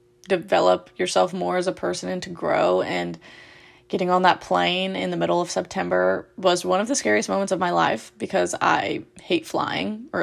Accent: American